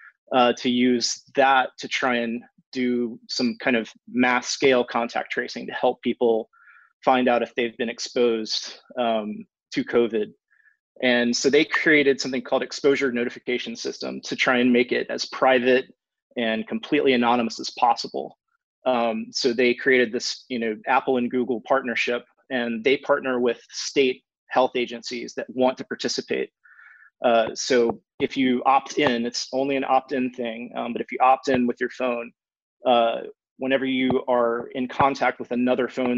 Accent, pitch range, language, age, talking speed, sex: American, 120-130 Hz, English, 30-49, 165 wpm, male